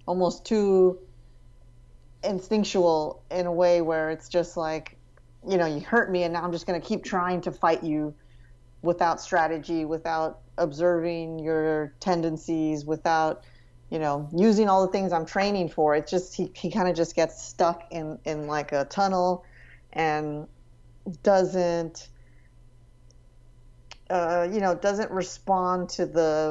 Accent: American